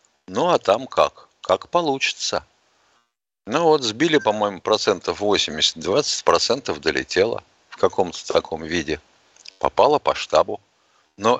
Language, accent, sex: Russian, native, male